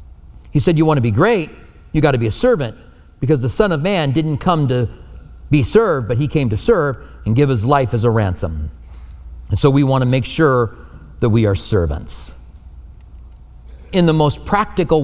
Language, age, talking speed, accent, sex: English, 40-59, 200 wpm, American, male